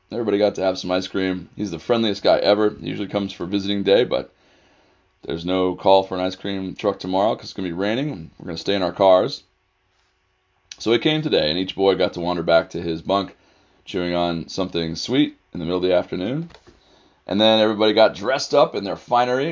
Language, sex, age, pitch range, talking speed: English, male, 30-49, 90-110 Hz, 230 wpm